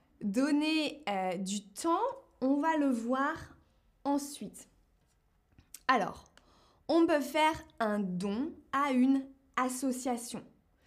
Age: 20-39